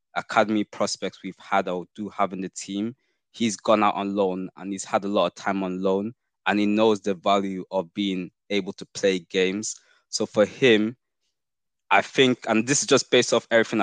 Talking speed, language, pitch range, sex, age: 205 wpm, English, 95-110 Hz, male, 20-39